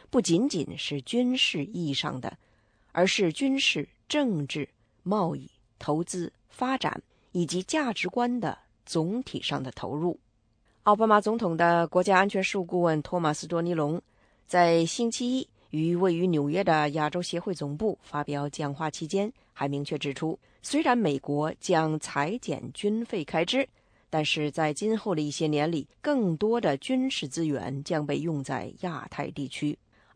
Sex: female